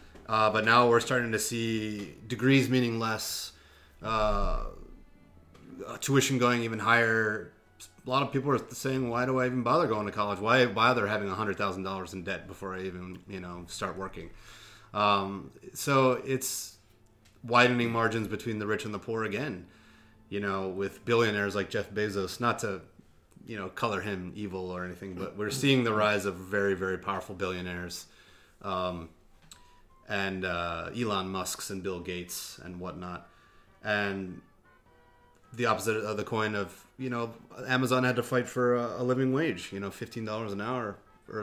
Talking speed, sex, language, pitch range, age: 170 wpm, male, English, 95-120 Hz, 30-49